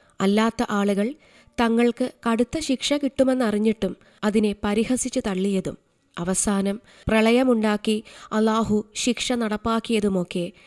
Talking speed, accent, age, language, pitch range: 80 wpm, native, 20-39, Malayalam, 195-235 Hz